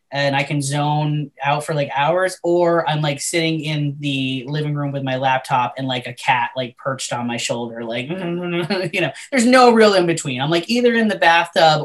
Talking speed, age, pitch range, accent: 215 wpm, 20-39, 135-180 Hz, American